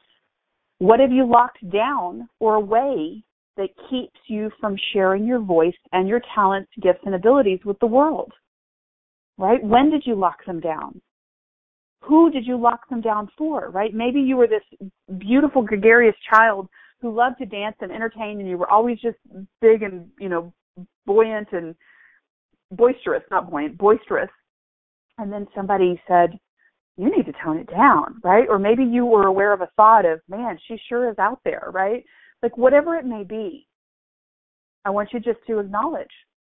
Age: 40-59